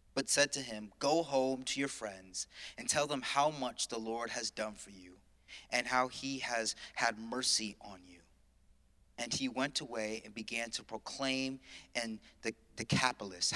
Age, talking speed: 30-49, 175 wpm